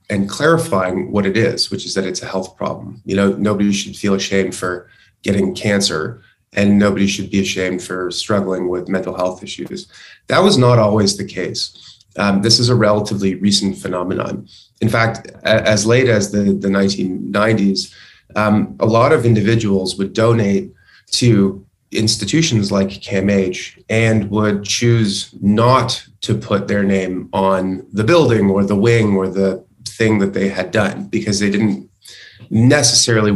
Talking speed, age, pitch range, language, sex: 160 wpm, 30-49, 95-110 Hz, English, male